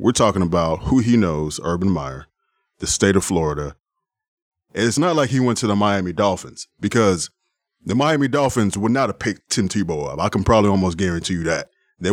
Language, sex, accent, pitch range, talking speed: English, male, American, 95-125 Hz, 205 wpm